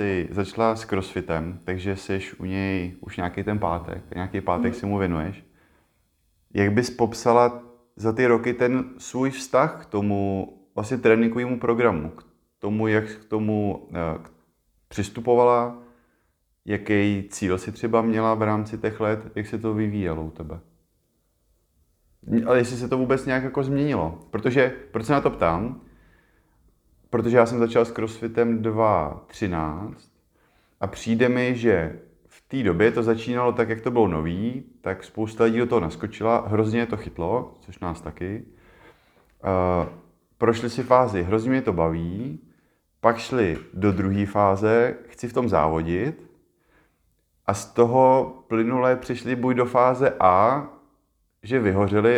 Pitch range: 90-120 Hz